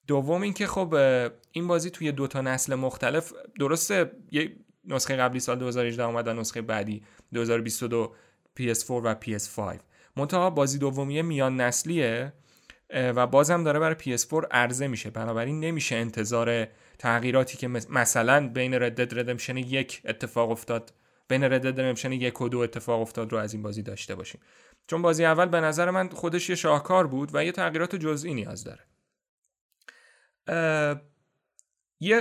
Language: Persian